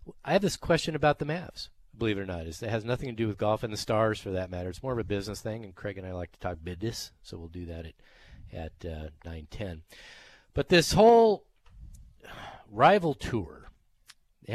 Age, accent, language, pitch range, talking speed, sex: 40-59, American, English, 95-120 Hz, 220 wpm, male